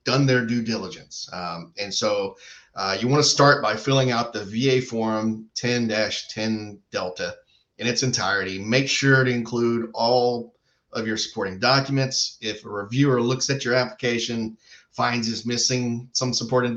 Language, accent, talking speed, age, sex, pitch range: English, American, 155 wpm, 30-49, male, 100-125 Hz